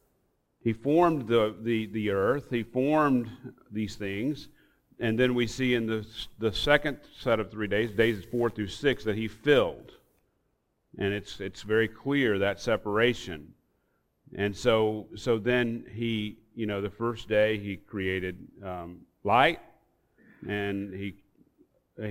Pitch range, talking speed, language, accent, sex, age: 100-115 Hz, 140 wpm, English, American, male, 40-59